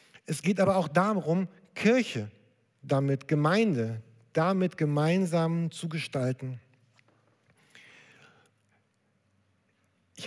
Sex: male